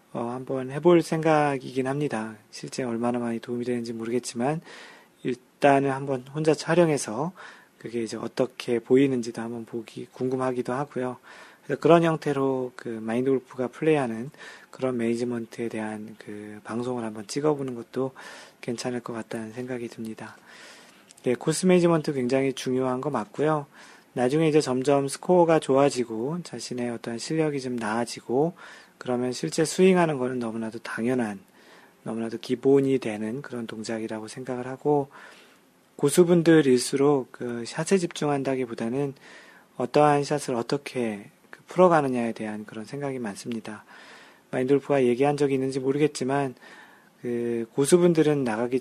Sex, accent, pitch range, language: male, native, 115-145 Hz, Korean